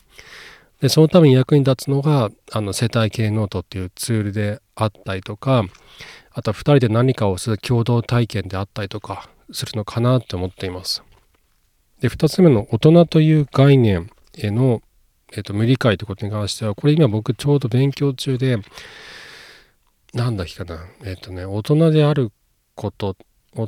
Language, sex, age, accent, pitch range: Japanese, male, 40-59, native, 100-135 Hz